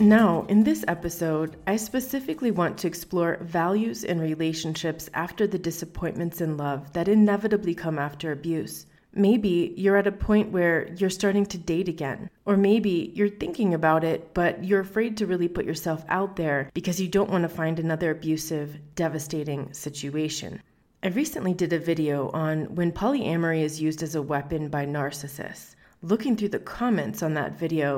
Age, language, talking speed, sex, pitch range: 30-49, English, 170 wpm, female, 155-195 Hz